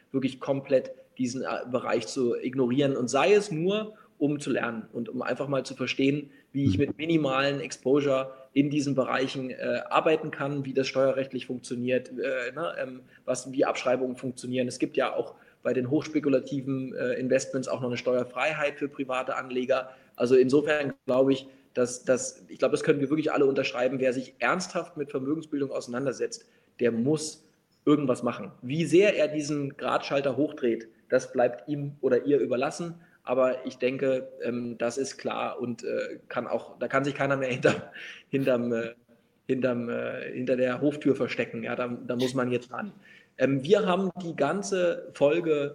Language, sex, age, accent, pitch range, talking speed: German, male, 20-39, German, 130-150 Hz, 165 wpm